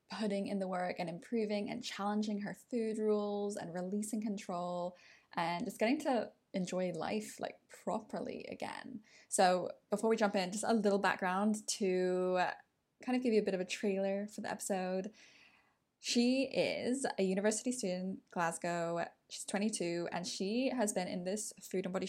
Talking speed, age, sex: 170 wpm, 10-29, female